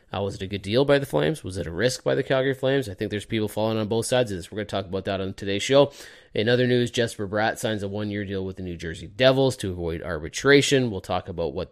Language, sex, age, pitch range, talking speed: English, male, 30-49, 95-125 Hz, 290 wpm